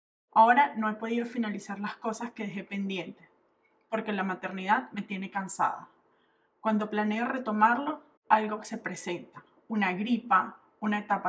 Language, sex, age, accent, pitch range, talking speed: Spanish, female, 20-39, Colombian, 195-235 Hz, 140 wpm